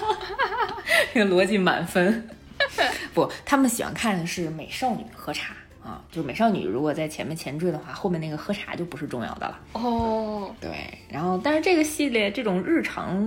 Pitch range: 160-210 Hz